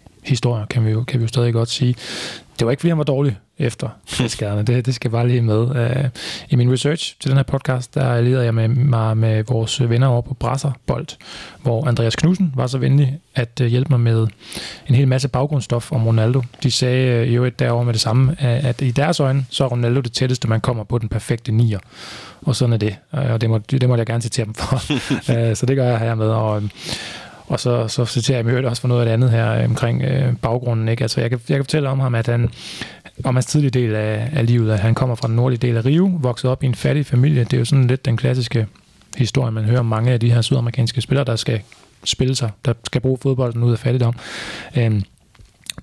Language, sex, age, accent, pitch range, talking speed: Danish, male, 20-39, native, 115-135 Hz, 245 wpm